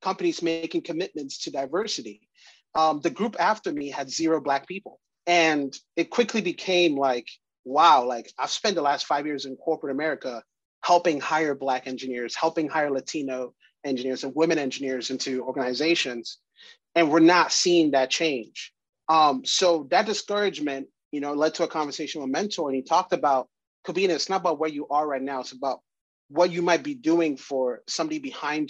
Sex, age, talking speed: male, 30-49, 175 wpm